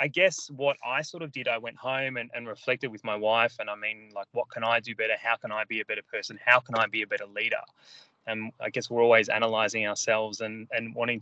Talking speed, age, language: 260 wpm, 20-39, English